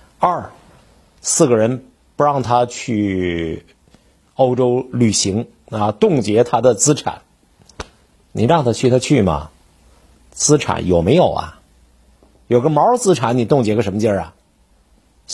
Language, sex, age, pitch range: Chinese, male, 50-69, 95-145 Hz